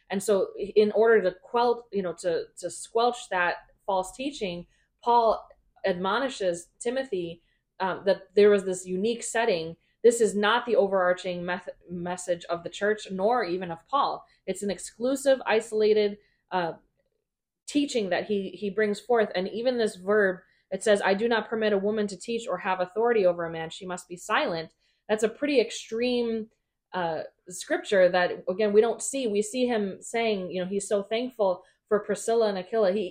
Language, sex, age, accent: English, female, 20-39, American